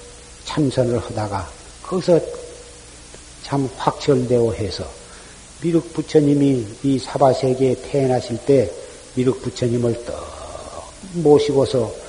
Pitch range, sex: 115-145 Hz, male